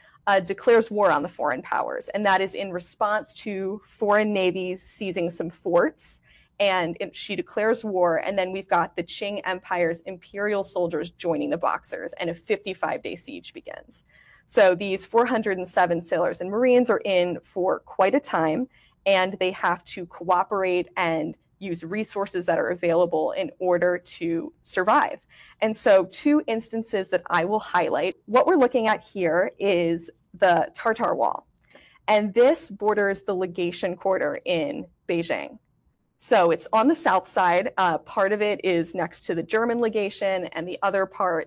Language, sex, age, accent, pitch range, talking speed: English, female, 20-39, American, 175-215 Hz, 160 wpm